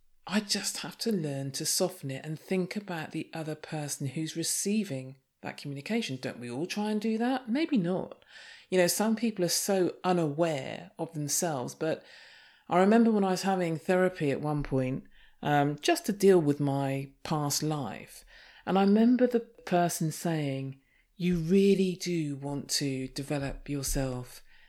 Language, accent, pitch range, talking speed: English, British, 135-195 Hz, 165 wpm